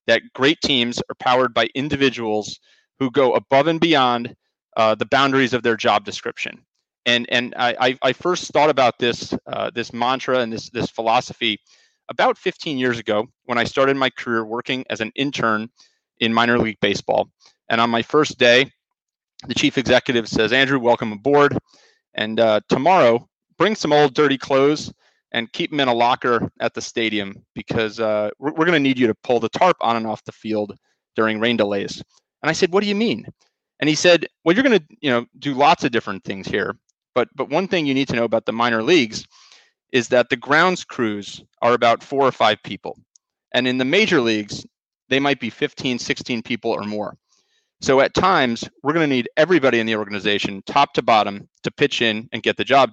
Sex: male